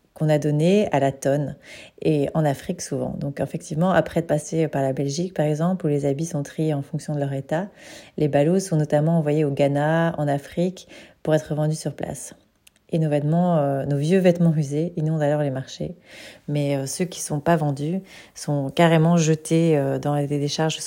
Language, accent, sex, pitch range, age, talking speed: French, French, female, 145-165 Hz, 30-49, 205 wpm